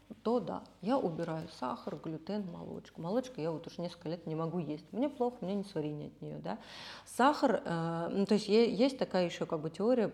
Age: 30-49